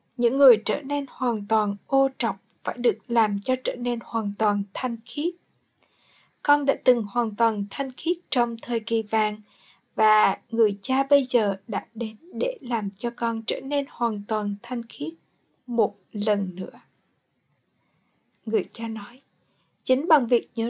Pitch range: 220-270 Hz